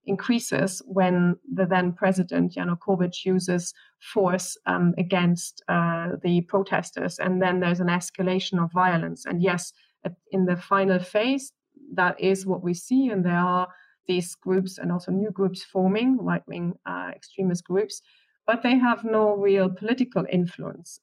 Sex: female